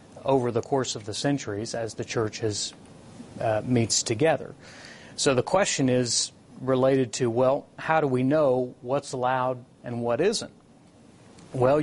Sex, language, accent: male, English, American